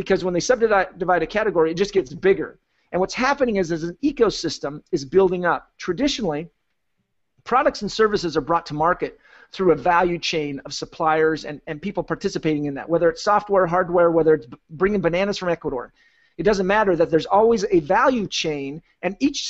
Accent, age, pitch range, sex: American, 40-59, 165-220 Hz, male